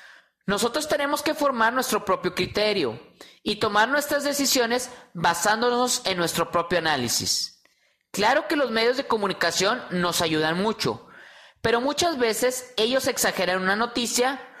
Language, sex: Spanish, male